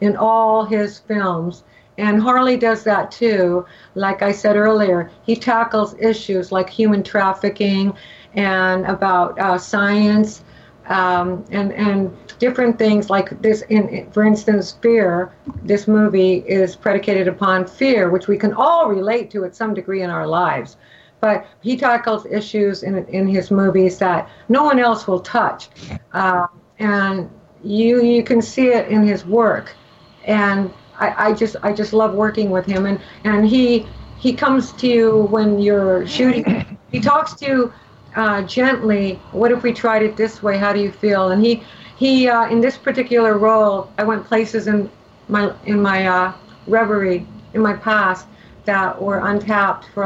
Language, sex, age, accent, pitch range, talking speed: English, female, 50-69, American, 190-220 Hz, 165 wpm